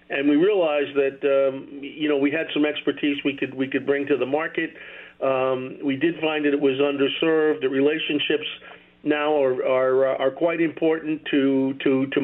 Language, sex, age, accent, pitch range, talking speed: English, male, 50-69, American, 135-155 Hz, 185 wpm